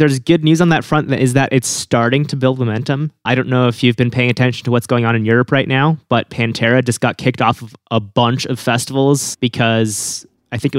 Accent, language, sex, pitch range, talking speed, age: American, English, male, 115-145 Hz, 250 wpm, 20-39